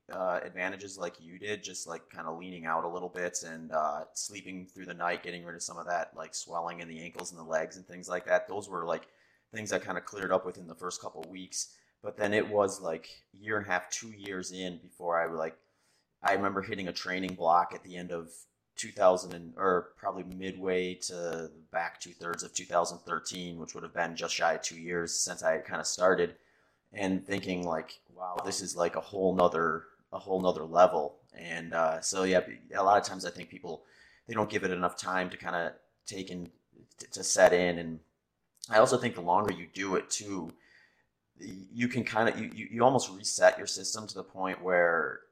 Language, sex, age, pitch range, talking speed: English, male, 30-49, 85-95 Hz, 220 wpm